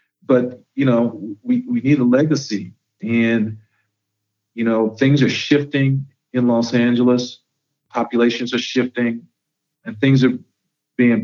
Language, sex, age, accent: English, male, 40-59, American